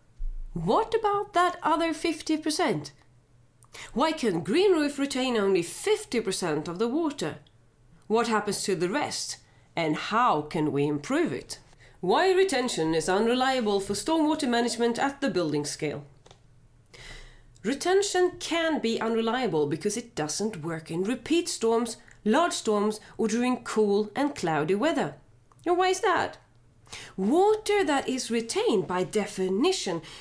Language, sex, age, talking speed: English, female, 30-49, 130 wpm